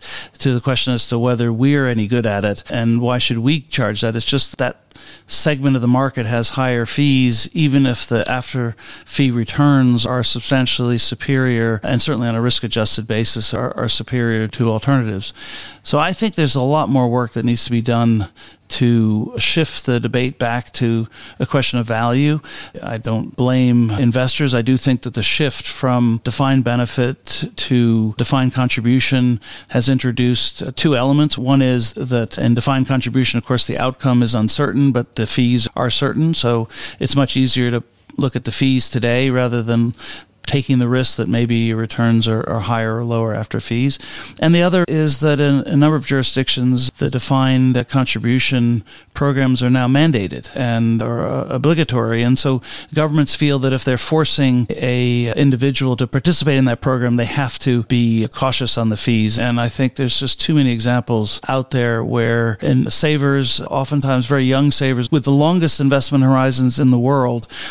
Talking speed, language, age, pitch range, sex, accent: 180 wpm, English, 40-59, 120-135 Hz, male, American